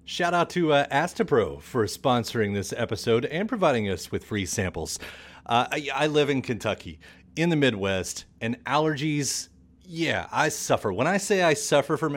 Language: English